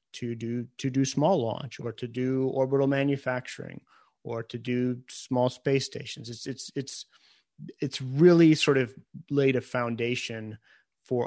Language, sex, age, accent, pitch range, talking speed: English, male, 30-49, American, 120-135 Hz, 150 wpm